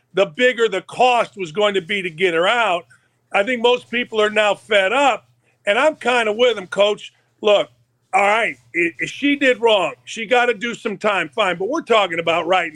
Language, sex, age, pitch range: English, male, 50-69, 185-240 Hz